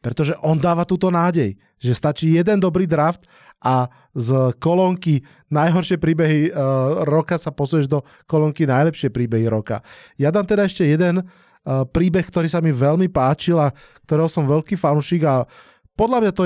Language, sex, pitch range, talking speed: Slovak, male, 125-160 Hz, 155 wpm